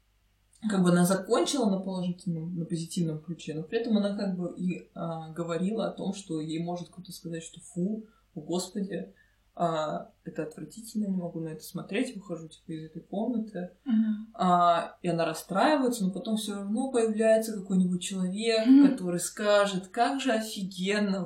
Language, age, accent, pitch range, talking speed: Russian, 20-39, native, 165-200 Hz, 165 wpm